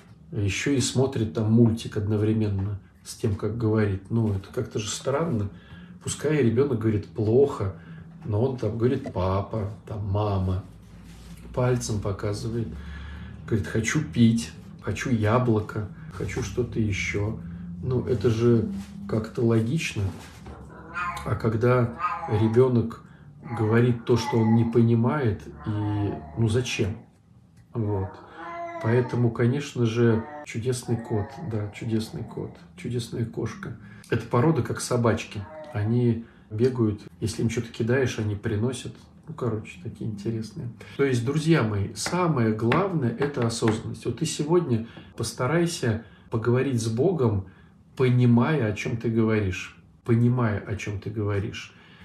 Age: 40-59